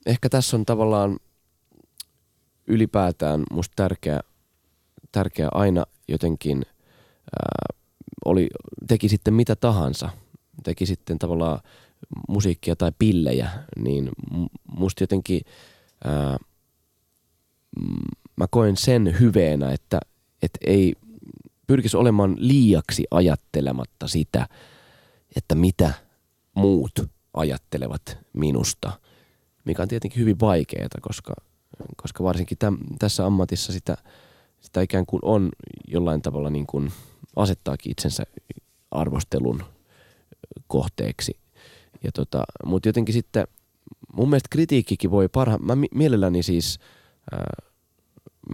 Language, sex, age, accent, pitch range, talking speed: Finnish, male, 20-39, native, 80-110 Hz, 100 wpm